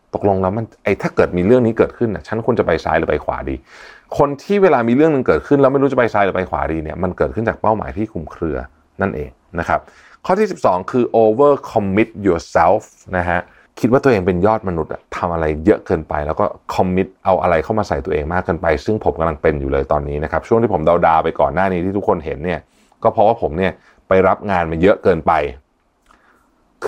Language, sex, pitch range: Thai, male, 85-110 Hz